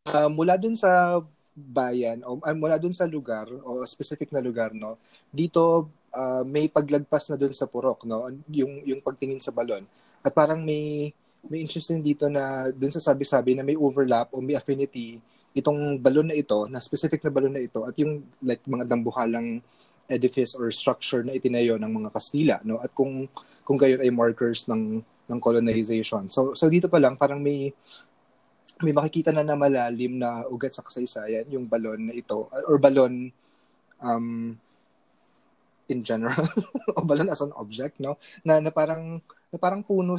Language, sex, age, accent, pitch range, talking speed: Filipino, male, 20-39, native, 120-150 Hz, 175 wpm